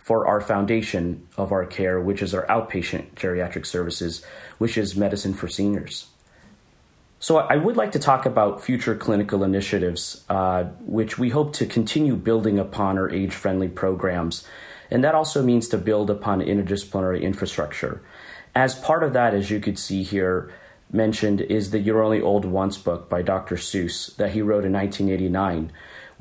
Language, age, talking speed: English, 30-49, 165 wpm